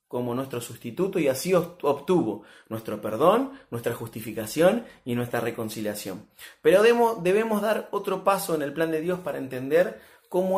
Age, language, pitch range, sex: 30-49, Spanish, 125-185 Hz, male